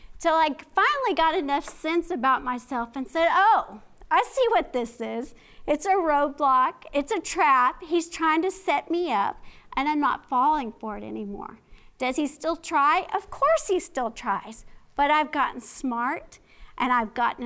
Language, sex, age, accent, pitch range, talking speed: English, female, 50-69, American, 250-335 Hz, 175 wpm